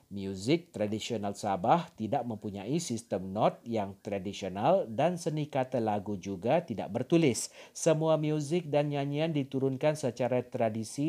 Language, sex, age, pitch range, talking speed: Malay, male, 40-59, 110-150 Hz, 125 wpm